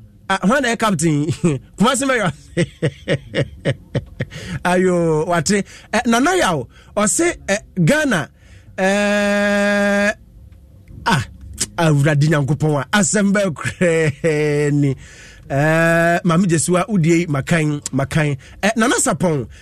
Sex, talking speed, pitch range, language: male, 110 wpm, 165-225 Hz, English